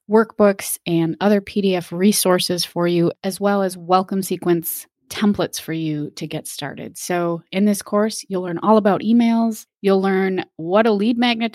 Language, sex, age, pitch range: English, female, 20-39, 170-210 Hz